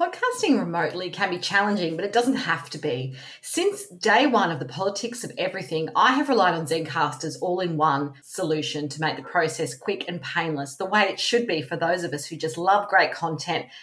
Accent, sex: Australian, female